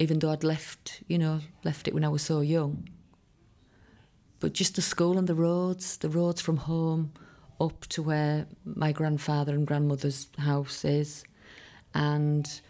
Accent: British